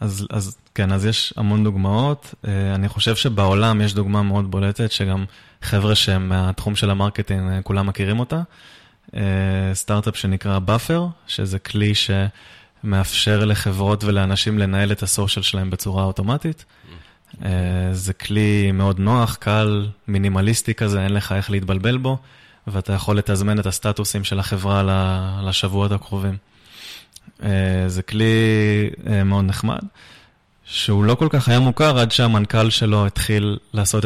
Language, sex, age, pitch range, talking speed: English, male, 20-39, 95-110 Hz, 130 wpm